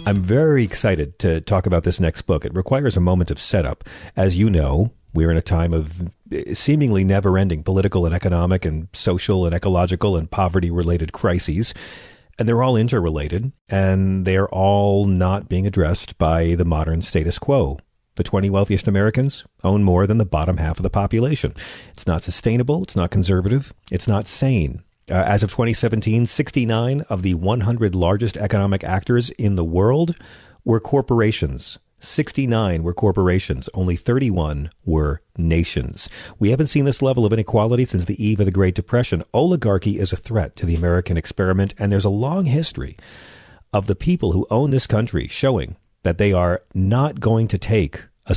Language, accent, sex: English, American, male